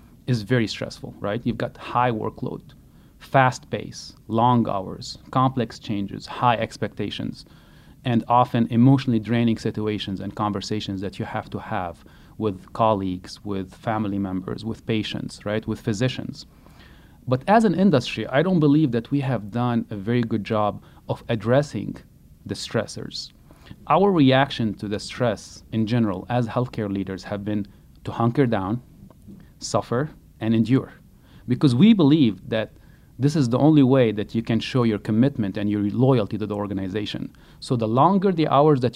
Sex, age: male, 30-49